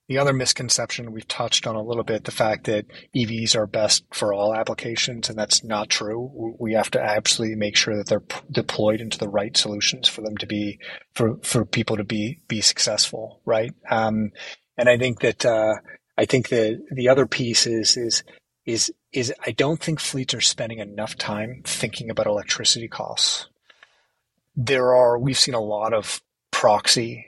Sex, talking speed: male, 185 wpm